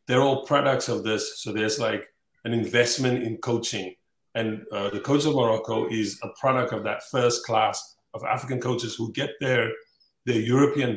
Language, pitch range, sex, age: English, 105-125 Hz, male, 30-49